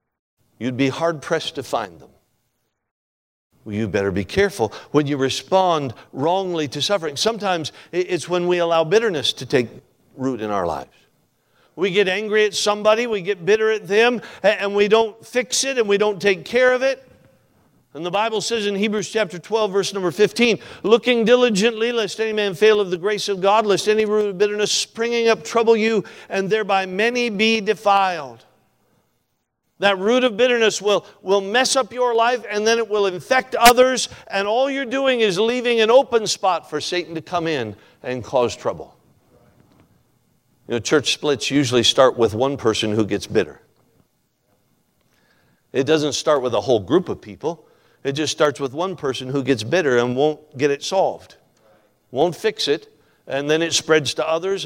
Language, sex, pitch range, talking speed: English, male, 150-220 Hz, 180 wpm